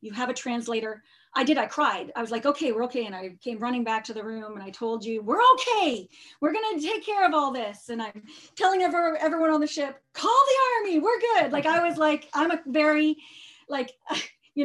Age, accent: 30-49, American